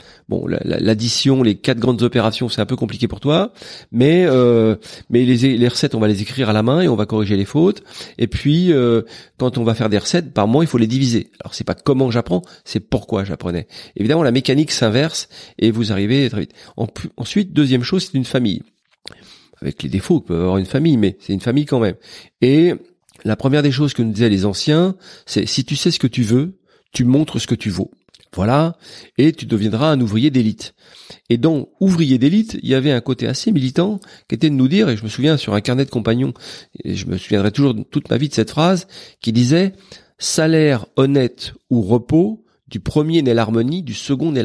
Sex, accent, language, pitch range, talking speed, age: male, French, French, 115-150 Hz, 225 wpm, 40-59